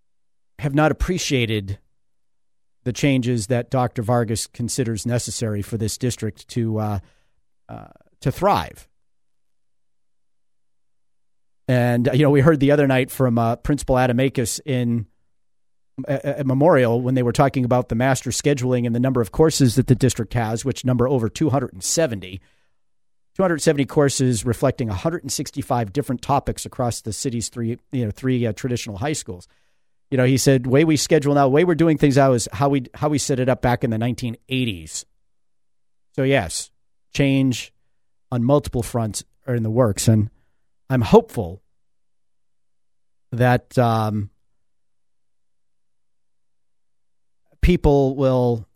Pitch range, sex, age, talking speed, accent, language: 90-135 Hz, male, 40-59, 140 wpm, American, English